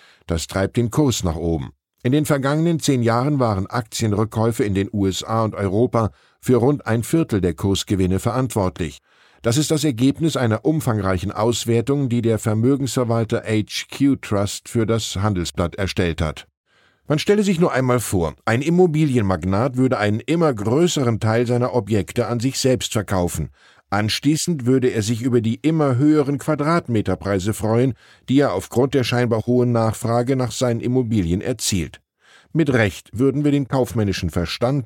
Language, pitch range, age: German, 100-135 Hz, 10-29